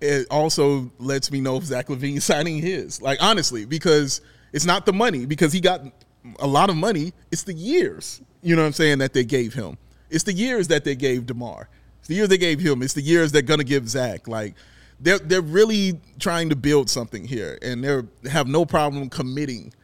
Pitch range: 125-155 Hz